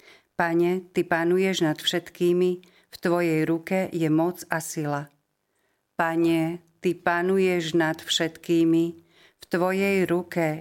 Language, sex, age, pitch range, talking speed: Slovak, female, 50-69, 160-175 Hz, 115 wpm